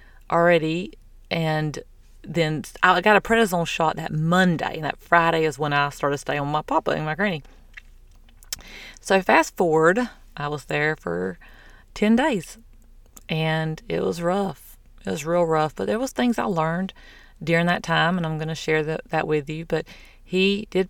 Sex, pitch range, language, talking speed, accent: female, 145-165 Hz, English, 180 wpm, American